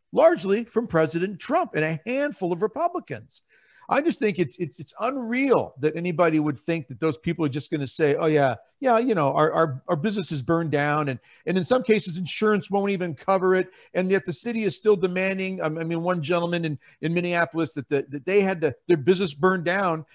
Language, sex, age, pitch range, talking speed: English, male, 50-69, 150-190 Hz, 220 wpm